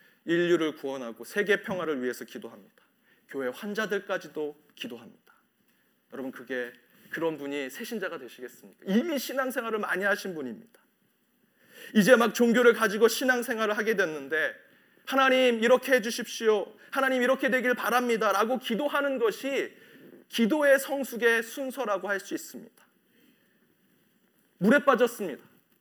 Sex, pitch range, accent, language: male, 175-255 Hz, native, Korean